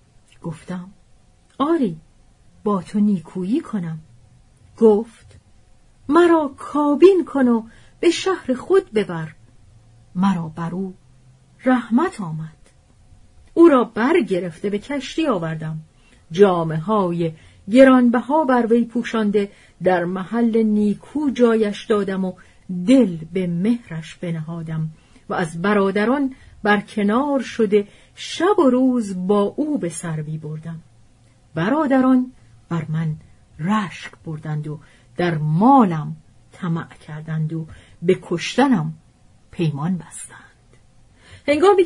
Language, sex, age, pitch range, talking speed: Persian, female, 40-59, 160-245 Hz, 100 wpm